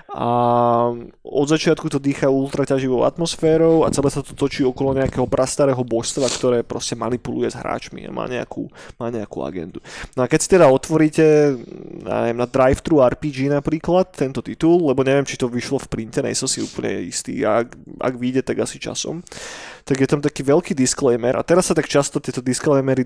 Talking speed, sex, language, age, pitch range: 185 wpm, male, Slovak, 20-39, 125-150 Hz